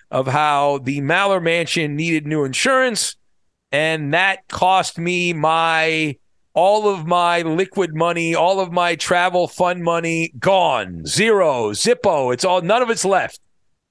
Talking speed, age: 140 wpm, 40-59